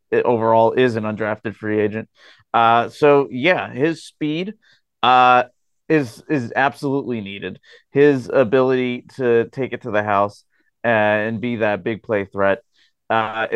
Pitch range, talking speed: 105-125 Hz, 140 wpm